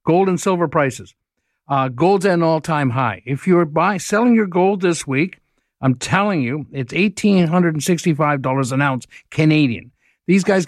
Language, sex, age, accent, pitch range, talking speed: English, male, 60-79, American, 145-200 Hz, 165 wpm